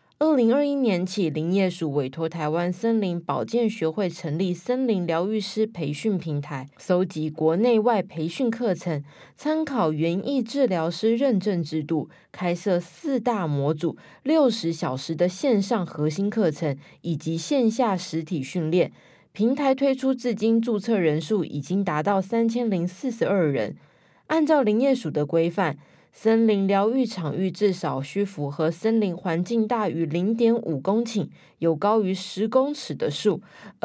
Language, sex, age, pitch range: Chinese, female, 20-39, 170-235 Hz